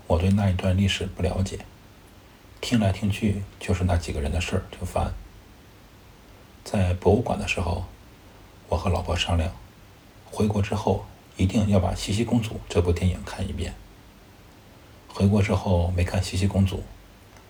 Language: Chinese